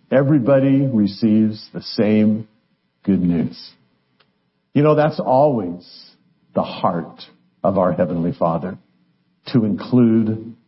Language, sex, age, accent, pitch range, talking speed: English, male, 50-69, American, 115-155 Hz, 100 wpm